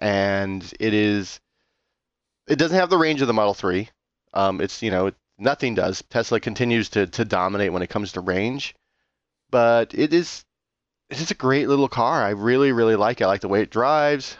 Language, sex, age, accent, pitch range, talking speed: English, male, 20-39, American, 100-130 Hz, 200 wpm